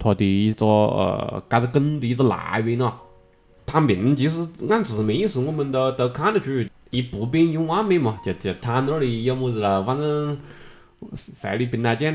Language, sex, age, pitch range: Chinese, male, 20-39, 100-130 Hz